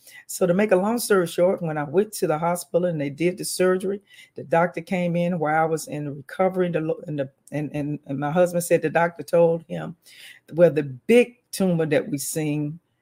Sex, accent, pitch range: female, American, 150-185 Hz